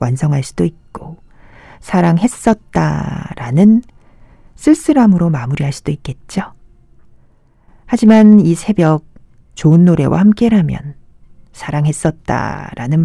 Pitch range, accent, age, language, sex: 145-220 Hz, native, 40-59, Korean, female